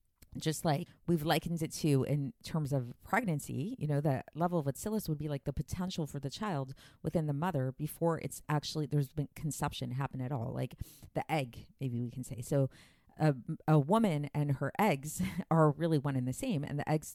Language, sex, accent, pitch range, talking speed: English, female, American, 135-165 Hz, 205 wpm